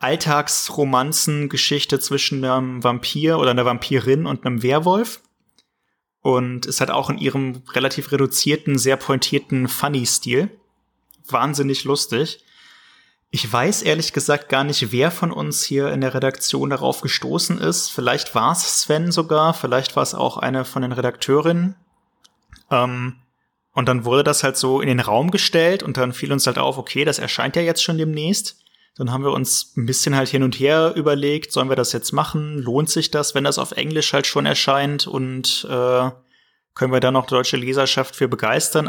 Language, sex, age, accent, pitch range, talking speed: German, male, 30-49, German, 125-150 Hz, 175 wpm